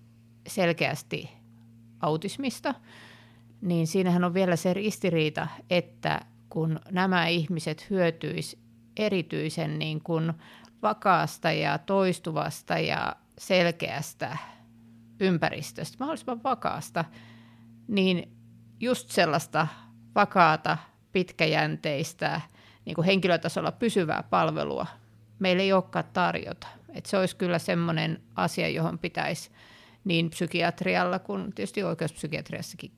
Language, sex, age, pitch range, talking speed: Finnish, female, 50-69, 115-180 Hz, 90 wpm